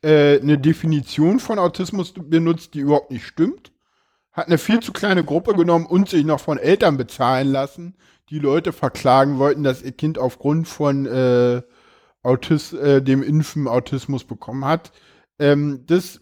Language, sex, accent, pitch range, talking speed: German, male, German, 135-160 Hz, 155 wpm